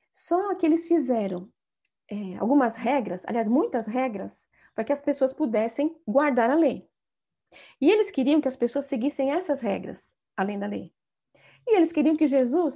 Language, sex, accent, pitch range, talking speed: Portuguese, female, Brazilian, 240-335 Hz, 160 wpm